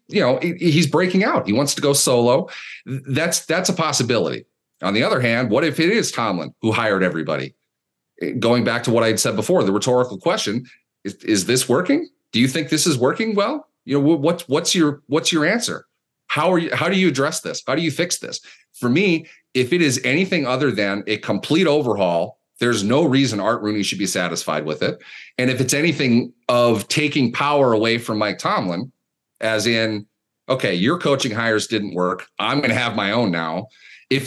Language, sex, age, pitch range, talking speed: English, male, 30-49, 110-155 Hz, 205 wpm